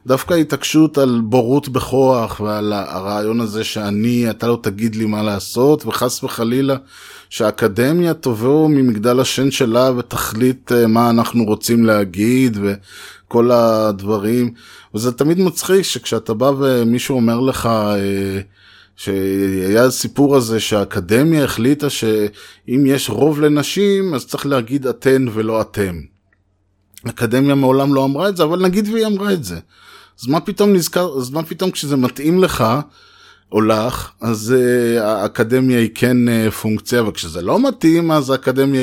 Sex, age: male, 20-39